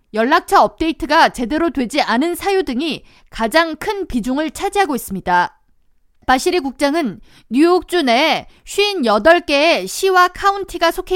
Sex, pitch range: female, 250-340 Hz